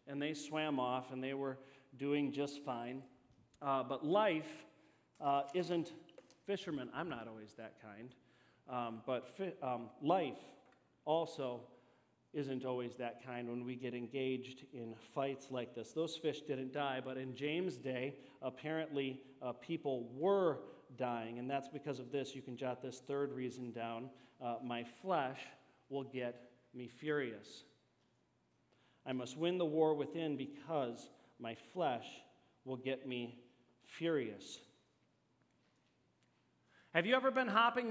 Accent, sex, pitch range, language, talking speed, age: American, male, 125-185 Hz, English, 140 wpm, 40-59